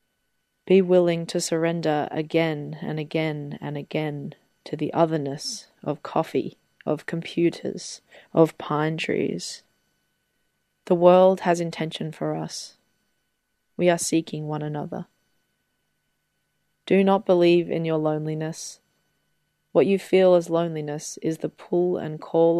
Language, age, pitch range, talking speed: English, 20-39, 150-170 Hz, 120 wpm